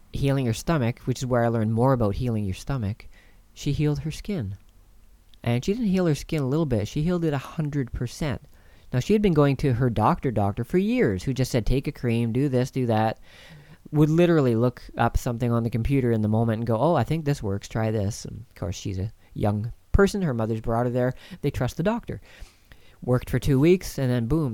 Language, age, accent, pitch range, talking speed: English, 40-59, American, 110-145 Hz, 235 wpm